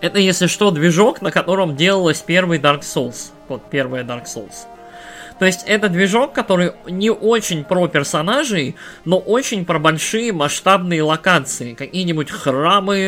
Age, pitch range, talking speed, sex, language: 20-39, 140-190 Hz, 140 wpm, male, Russian